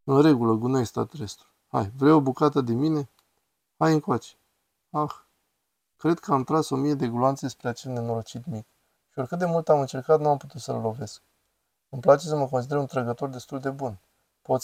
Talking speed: 195 wpm